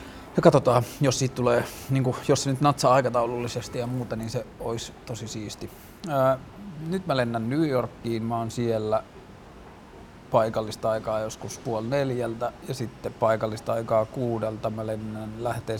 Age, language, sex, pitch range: 30-49, Finnish, male, 105-120 Hz